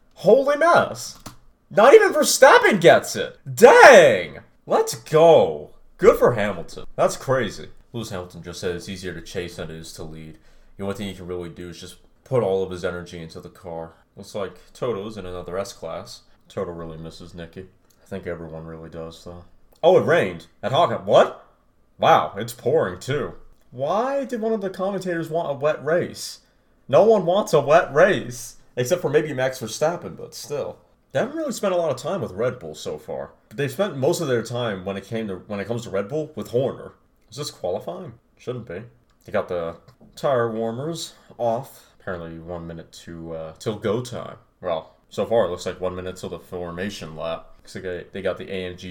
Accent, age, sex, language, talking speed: American, 30-49, male, English, 200 wpm